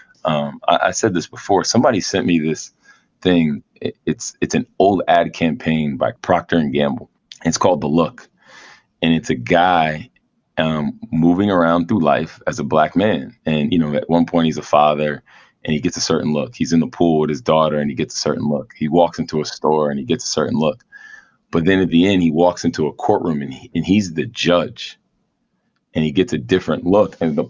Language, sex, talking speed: English, male, 225 wpm